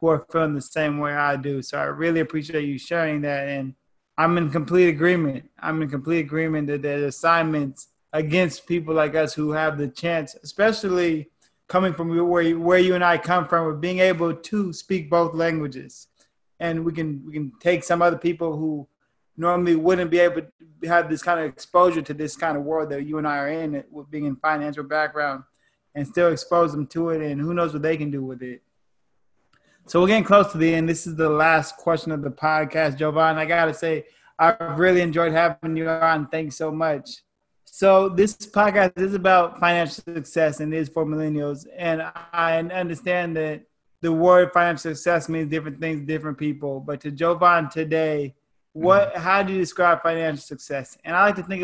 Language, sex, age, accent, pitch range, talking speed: English, male, 20-39, American, 150-170 Hz, 200 wpm